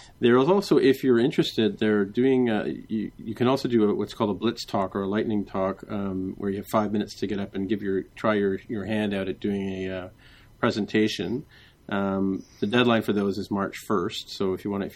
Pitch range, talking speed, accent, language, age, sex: 95-115 Hz, 235 wpm, American, English, 40-59, male